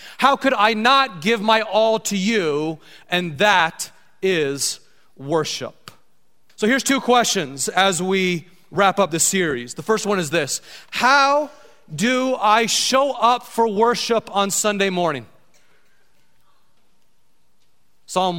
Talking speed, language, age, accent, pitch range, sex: 125 wpm, English, 30-49, American, 180-225 Hz, male